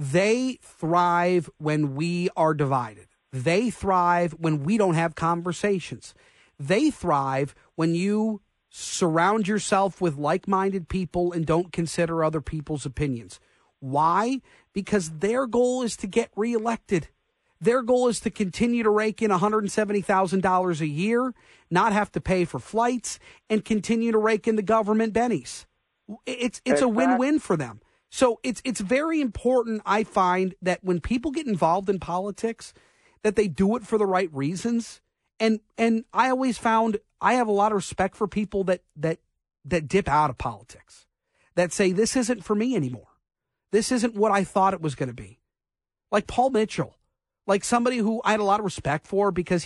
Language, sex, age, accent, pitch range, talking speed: English, male, 40-59, American, 170-230 Hz, 170 wpm